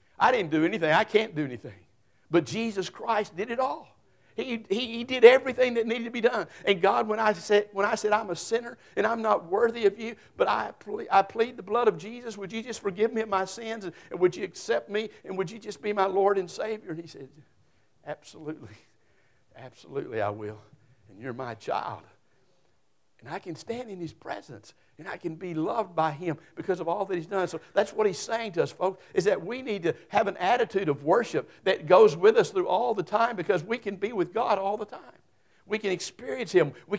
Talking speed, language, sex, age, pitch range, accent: 230 wpm, English, male, 60-79, 155-215 Hz, American